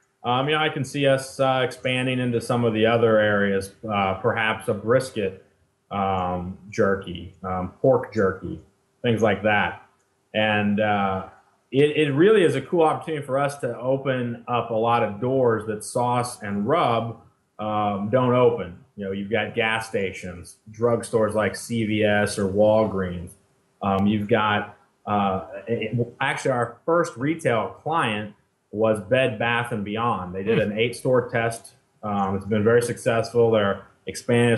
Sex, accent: male, American